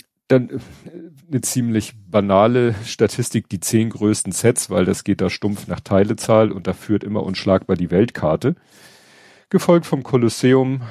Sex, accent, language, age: male, German, German, 40-59